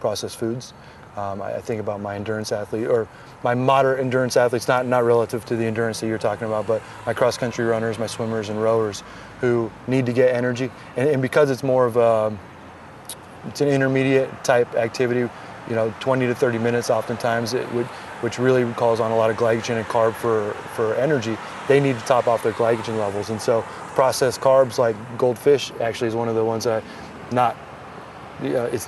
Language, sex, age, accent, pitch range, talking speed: English, male, 30-49, American, 115-130 Hz, 190 wpm